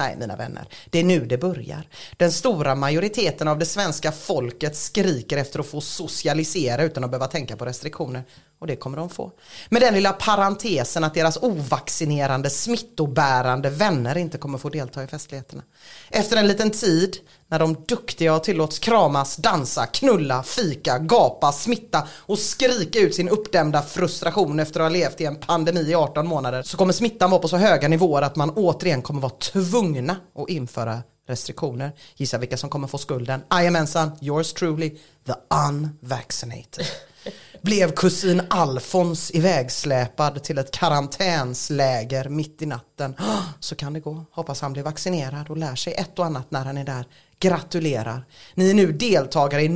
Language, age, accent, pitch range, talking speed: English, 30-49, Swedish, 140-175 Hz, 170 wpm